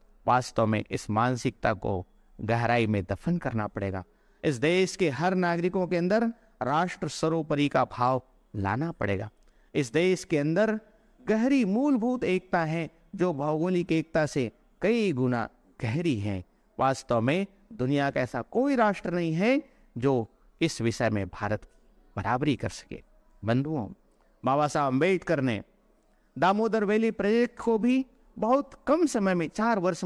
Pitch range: 125-200 Hz